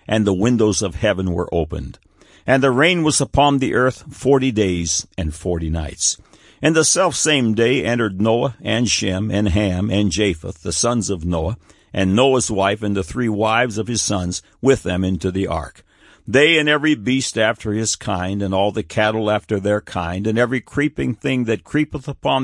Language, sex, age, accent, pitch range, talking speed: English, male, 60-79, American, 95-125 Hz, 190 wpm